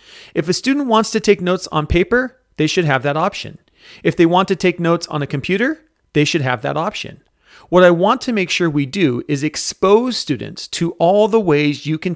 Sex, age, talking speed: male, 40-59, 220 wpm